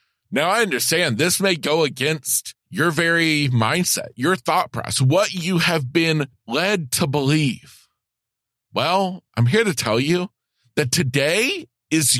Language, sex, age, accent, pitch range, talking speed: English, male, 40-59, American, 115-155 Hz, 145 wpm